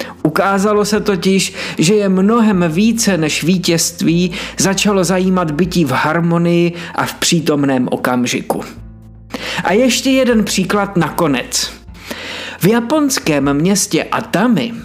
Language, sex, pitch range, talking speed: Czech, male, 155-220 Hz, 110 wpm